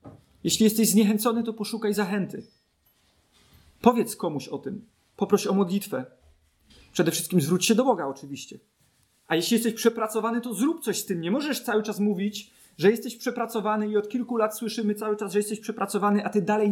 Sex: male